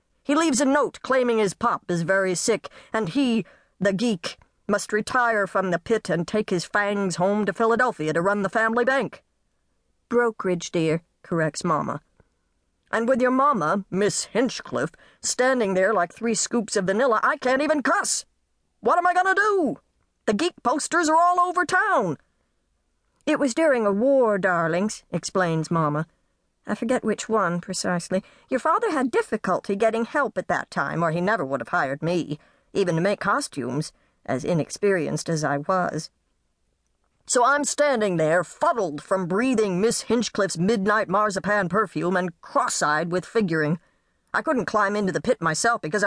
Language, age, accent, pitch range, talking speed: English, 50-69, American, 175-240 Hz, 165 wpm